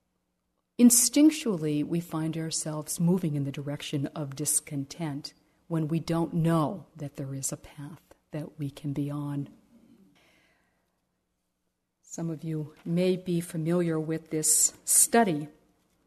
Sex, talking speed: female, 125 wpm